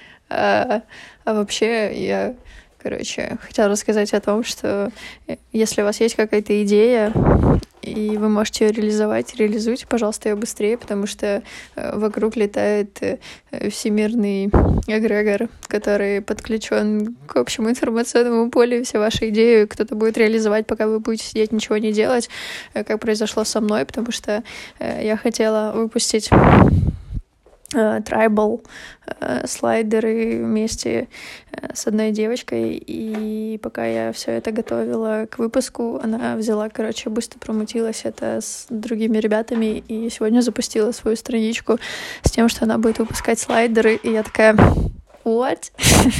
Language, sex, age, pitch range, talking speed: Russian, female, 20-39, 215-230 Hz, 125 wpm